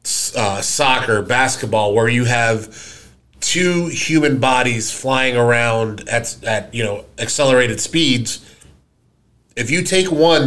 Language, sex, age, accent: English, male, 30-49, American